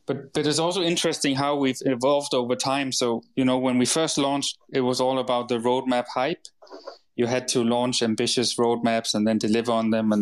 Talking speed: 210 wpm